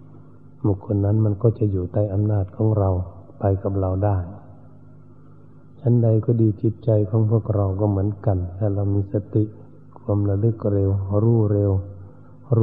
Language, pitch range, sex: Thai, 100-120 Hz, male